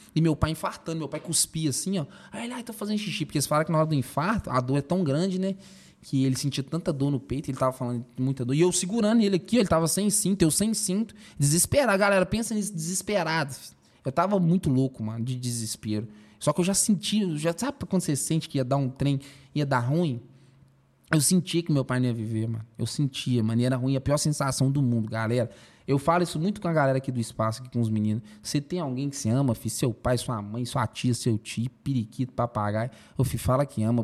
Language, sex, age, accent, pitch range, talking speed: Portuguese, male, 20-39, Brazilian, 125-170 Hz, 245 wpm